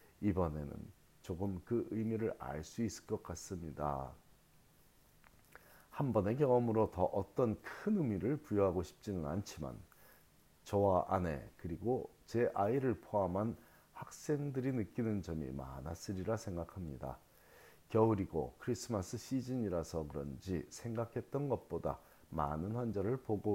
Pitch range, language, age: 85-115 Hz, Korean, 40-59